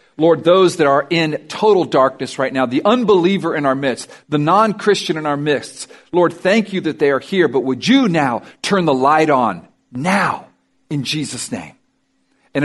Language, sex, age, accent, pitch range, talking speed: English, male, 50-69, American, 135-185 Hz, 190 wpm